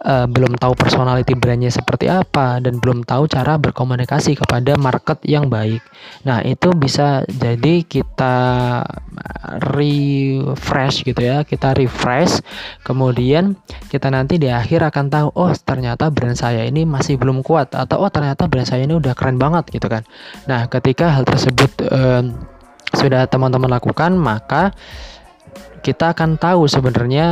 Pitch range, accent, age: 125-150 Hz, native, 20-39